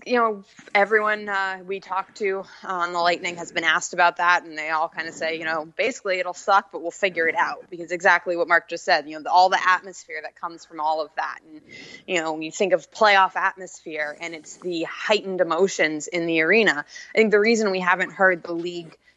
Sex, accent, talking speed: female, American, 230 wpm